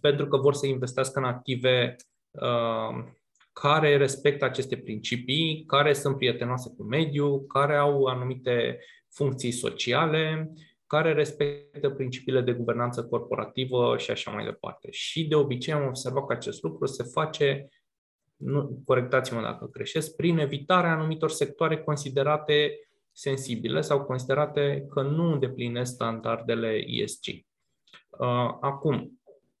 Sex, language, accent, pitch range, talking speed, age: male, Romanian, native, 125-145 Hz, 120 wpm, 20-39